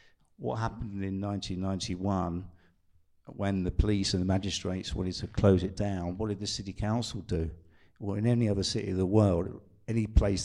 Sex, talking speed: male, 180 wpm